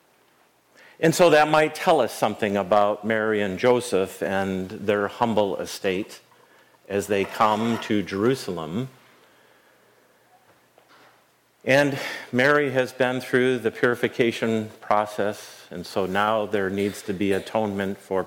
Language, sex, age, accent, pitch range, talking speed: English, male, 50-69, American, 100-140 Hz, 120 wpm